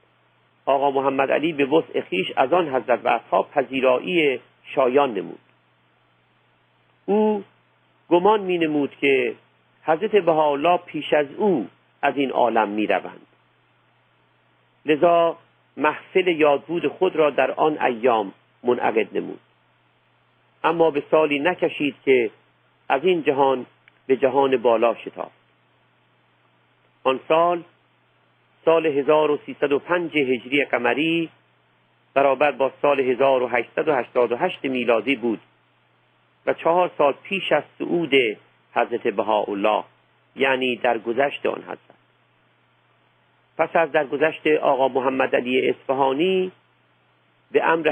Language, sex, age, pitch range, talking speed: Persian, male, 50-69, 130-165 Hz, 100 wpm